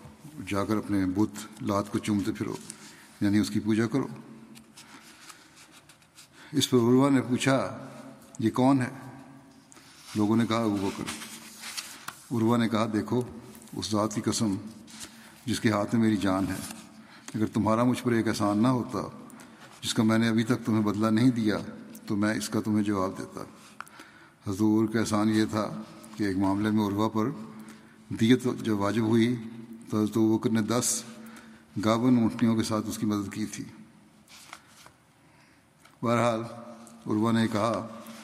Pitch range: 105-115 Hz